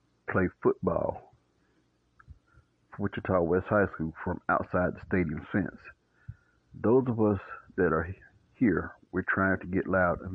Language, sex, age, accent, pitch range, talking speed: English, male, 60-79, American, 85-100 Hz, 140 wpm